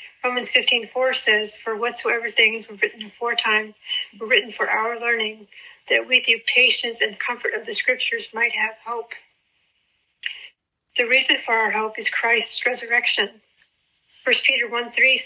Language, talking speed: English, 145 wpm